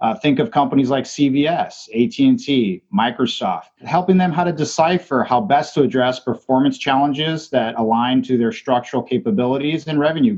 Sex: male